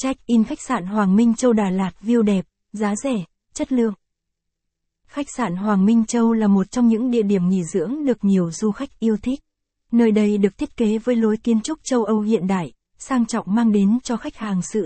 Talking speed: 220 wpm